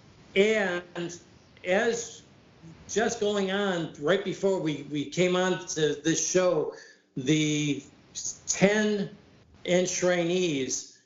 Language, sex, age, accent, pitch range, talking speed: English, male, 50-69, American, 145-180 Hz, 90 wpm